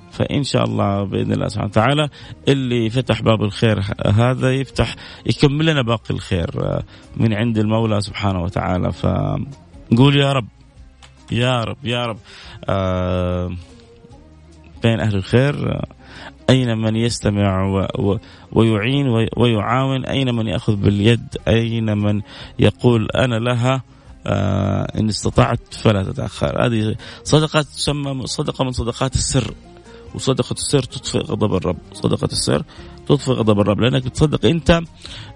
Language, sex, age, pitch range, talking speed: Arabic, male, 30-49, 105-135 Hz, 115 wpm